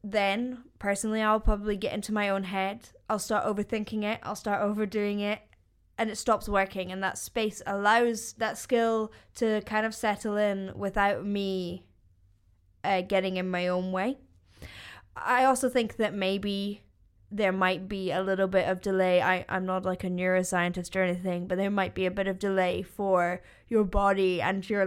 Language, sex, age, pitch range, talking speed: English, female, 10-29, 185-215 Hz, 180 wpm